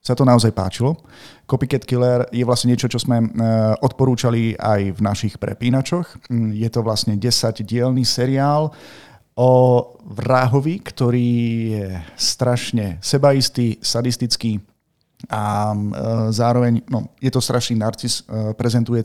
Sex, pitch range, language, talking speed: male, 110-130 Hz, Slovak, 115 wpm